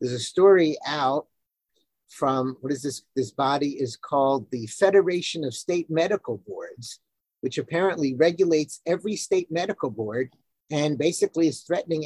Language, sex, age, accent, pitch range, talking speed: English, male, 50-69, American, 145-195 Hz, 145 wpm